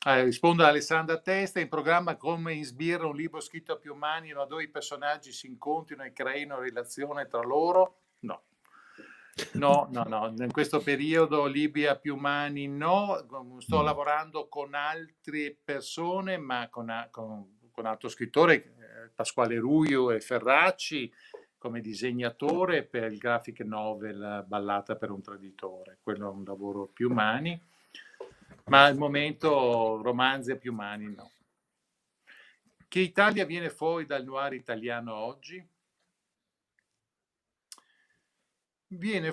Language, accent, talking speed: Italian, native, 135 wpm